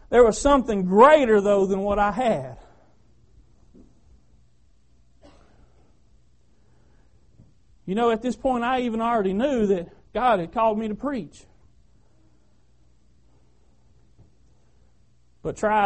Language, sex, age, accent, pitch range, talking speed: English, male, 40-59, American, 155-235 Hz, 100 wpm